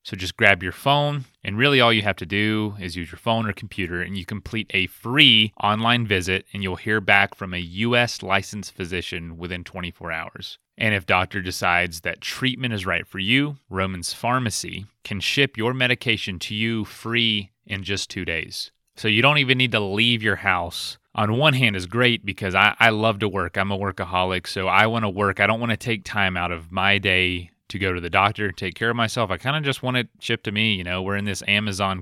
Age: 30-49